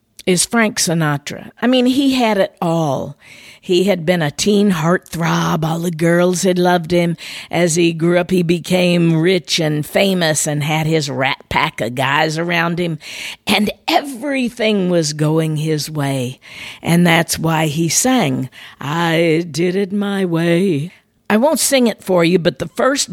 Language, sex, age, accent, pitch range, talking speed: English, female, 50-69, American, 155-205 Hz, 165 wpm